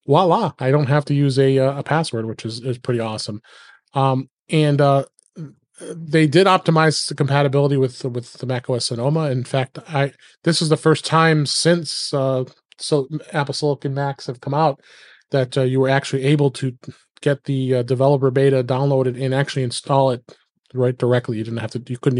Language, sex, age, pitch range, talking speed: English, male, 30-49, 125-150 Hz, 185 wpm